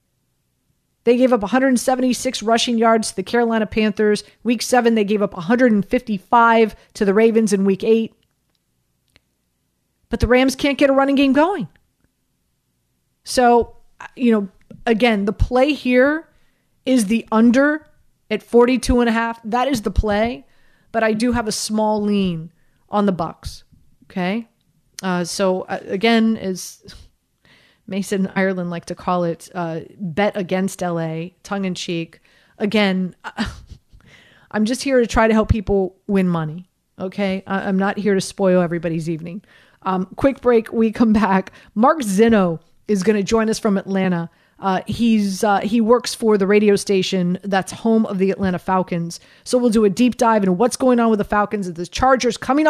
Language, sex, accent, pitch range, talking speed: English, female, American, 190-235 Hz, 165 wpm